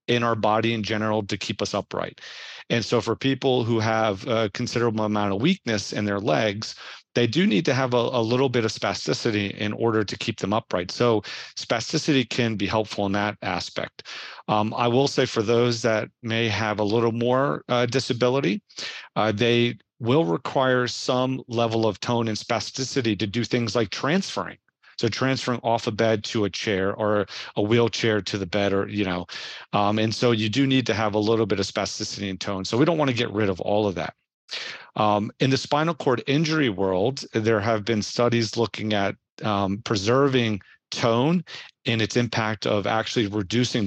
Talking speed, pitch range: 195 wpm, 105-120 Hz